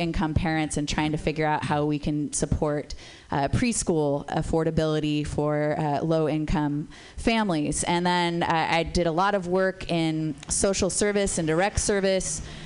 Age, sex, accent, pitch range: 30-49, female, American, 160-185 Hz